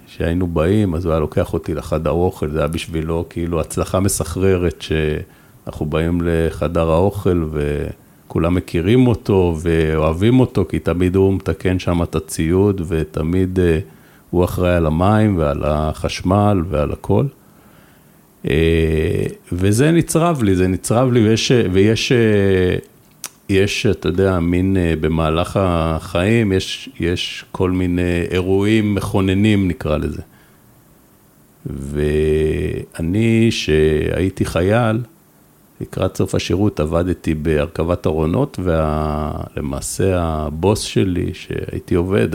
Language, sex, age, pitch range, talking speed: Hebrew, male, 50-69, 80-100 Hz, 110 wpm